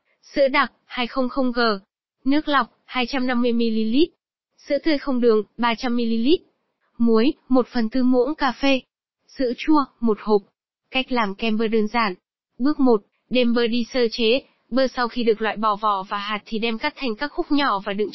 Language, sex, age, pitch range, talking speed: Vietnamese, female, 20-39, 225-265 Hz, 170 wpm